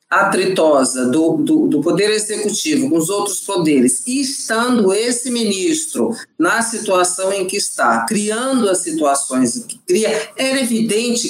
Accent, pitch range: Brazilian, 180-255 Hz